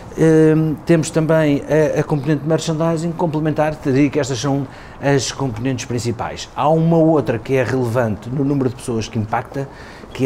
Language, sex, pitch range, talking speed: Portuguese, male, 115-140 Hz, 165 wpm